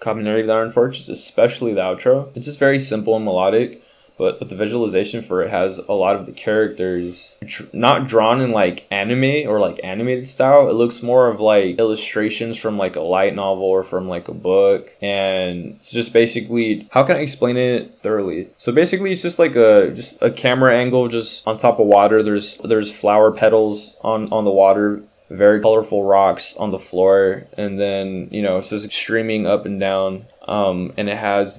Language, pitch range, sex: English, 95-115 Hz, male